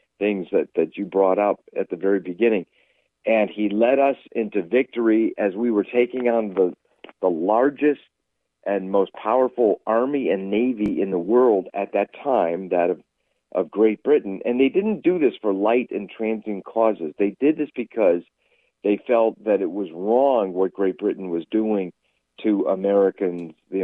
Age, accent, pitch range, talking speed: 50-69, American, 95-125 Hz, 175 wpm